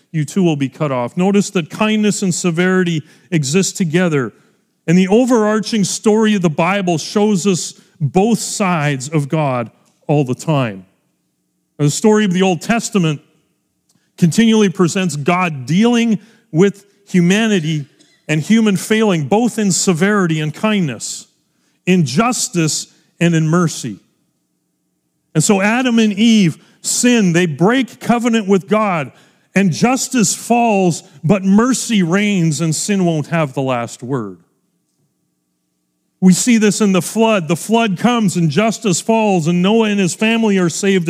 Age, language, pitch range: 40-59, English, 160-210 Hz